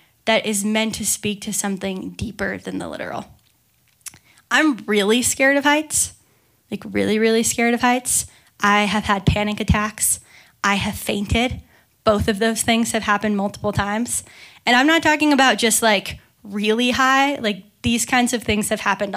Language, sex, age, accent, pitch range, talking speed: English, female, 10-29, American, 210-250 Hz, 170 wpm